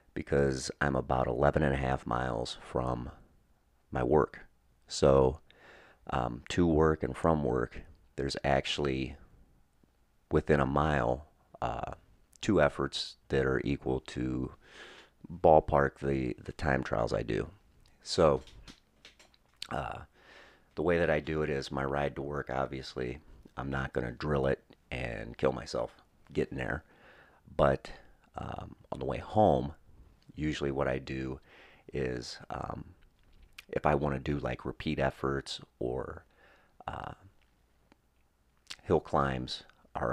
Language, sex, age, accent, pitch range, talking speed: English, male, 40-59, American, 65-75 Hz, 130 wpm